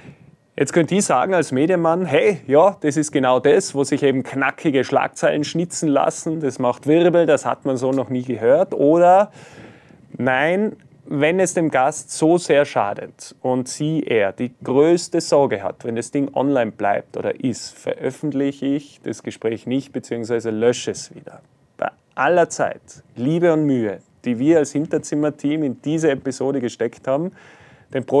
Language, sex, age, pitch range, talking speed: German, male, 30-49, 130-160 Hz, 165 wpm